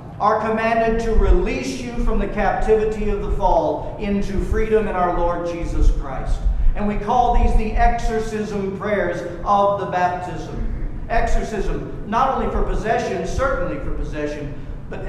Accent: American